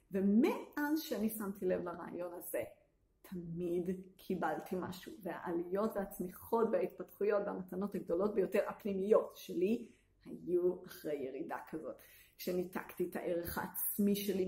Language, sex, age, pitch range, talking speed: Hebrew, female, 30-49, 175-225 Hz, 110 wpm